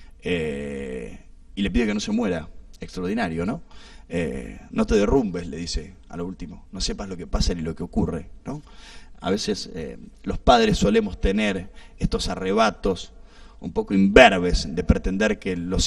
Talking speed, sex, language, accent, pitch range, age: 170 wpm, male, Spanish, Argentinian, 85-110 Hz, 20-39